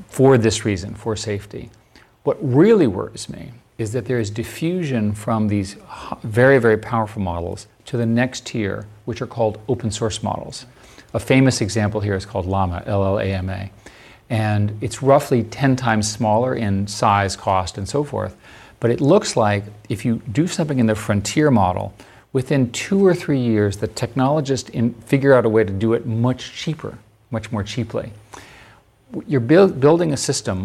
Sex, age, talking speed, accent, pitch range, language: male, 40-59, 165 wpm, American, 105-130 Hz, English